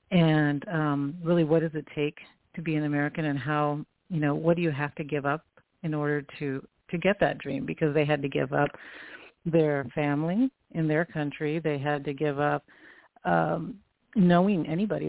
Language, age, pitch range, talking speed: English, 50-69, 145-170 Hz, 190 wpm